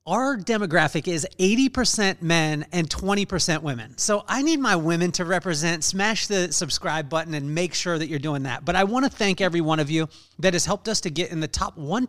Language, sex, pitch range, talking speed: English, male, 145-180 Hz, 235 wpm